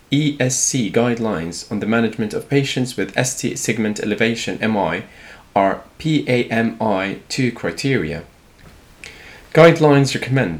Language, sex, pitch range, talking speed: English, male, 105-135 Hz, 90 wpm